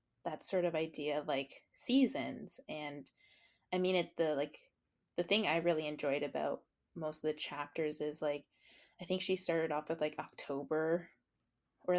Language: English